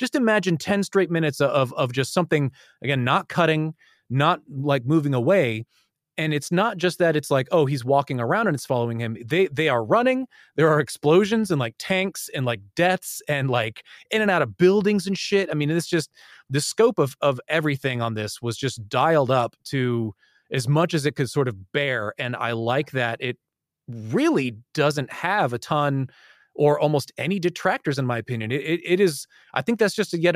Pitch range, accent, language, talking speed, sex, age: 125-165 Hz, American, English, 205 wpm, male, 30-49